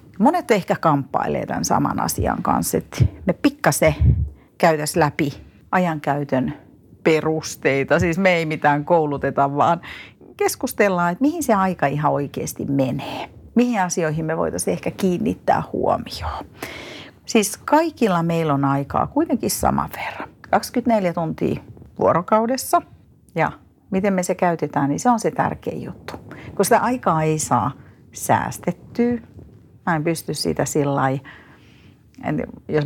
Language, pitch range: Finnish, 140-200 Hz